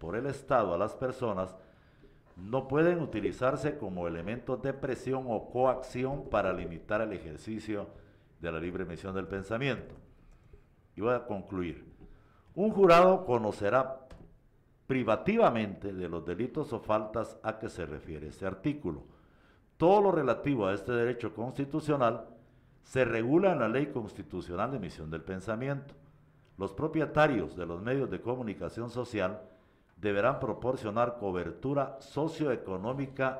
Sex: male